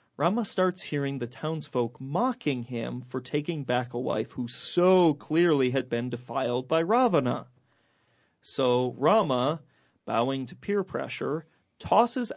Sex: male